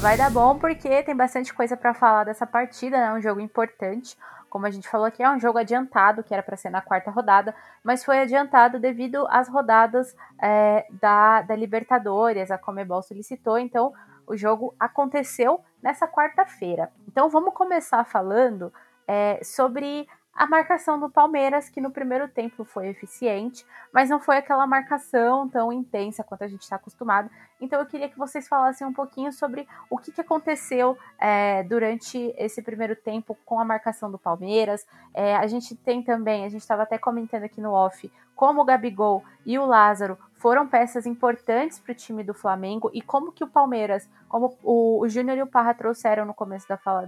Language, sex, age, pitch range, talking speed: Portuguese, female, 20-39, 210-260 Hz, 180 wpm